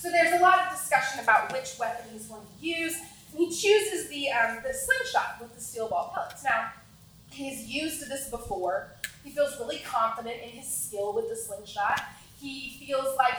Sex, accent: female, American